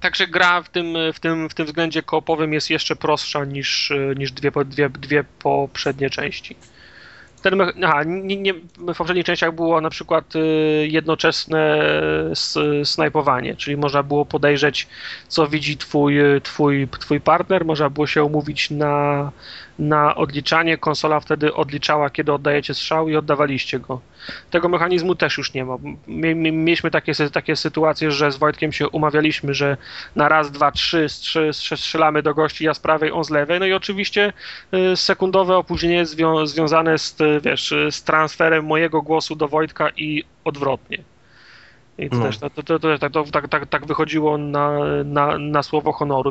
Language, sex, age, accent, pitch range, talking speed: Polish, male, 30-49, native, 145-165 Hz, 150 wpm